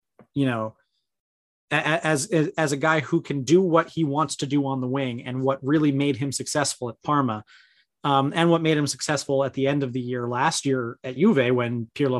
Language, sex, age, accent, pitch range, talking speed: English, male, 30-49, American, 125-155 Hz, 210 wpm